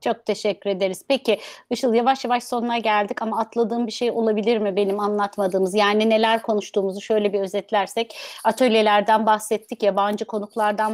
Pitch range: 200-235 Hz